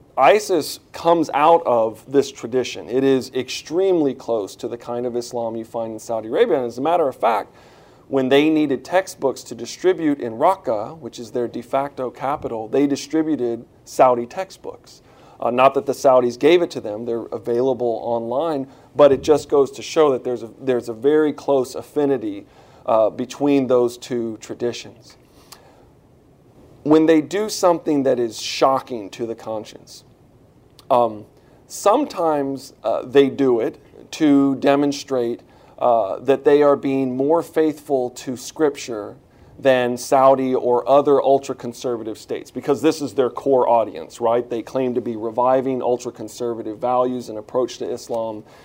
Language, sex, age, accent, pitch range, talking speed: English, male, 40-59, American, 120-145 Hz, 155 wpm